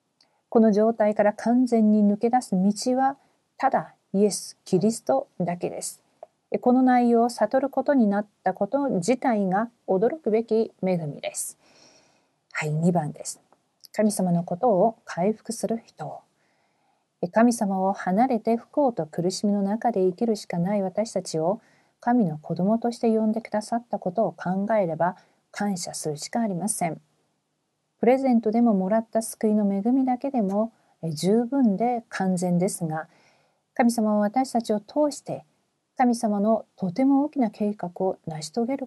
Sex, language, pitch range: female, Korean, 185-235 Hz